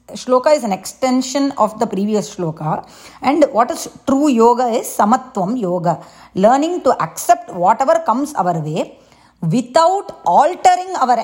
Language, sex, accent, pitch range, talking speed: English, female, Indian, 185-245 Hz, 140 wpm